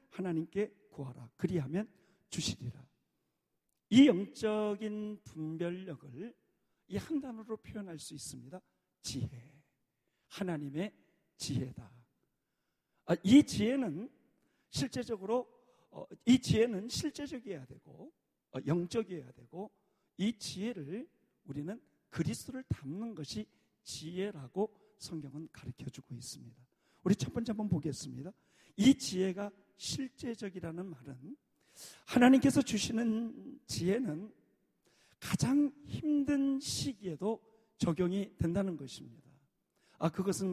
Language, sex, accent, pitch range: Korean, male, native, 150-220 Hz